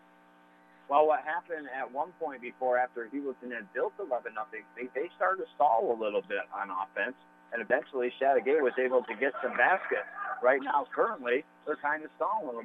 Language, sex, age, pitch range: English, male, 50-69, 120-150 Hz